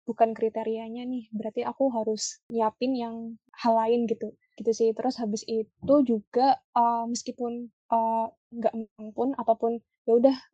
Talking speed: 150 wpm